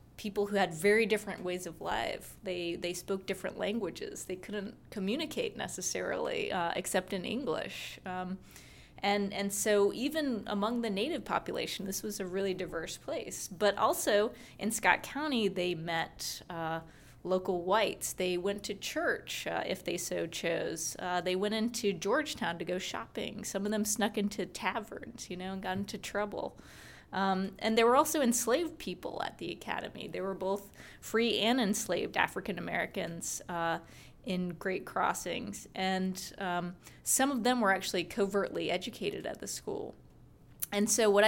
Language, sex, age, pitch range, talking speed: English, female, 20-39, 180-215 Hz, 160 wpm